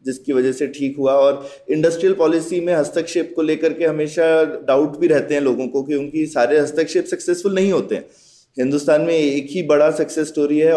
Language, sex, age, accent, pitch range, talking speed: Hindi, male, 20-39, native, 145-195 Hz, 200 wpm